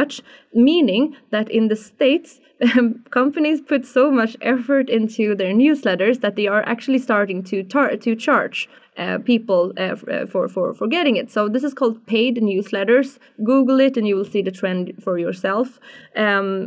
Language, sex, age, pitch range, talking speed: English, female, 20-39, 200-250 Hz, 180 wpm